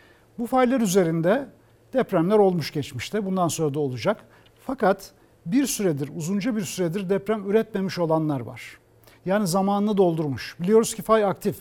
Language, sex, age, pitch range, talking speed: Turkish, male, 60-79, 155-210 Hz, 140 wpm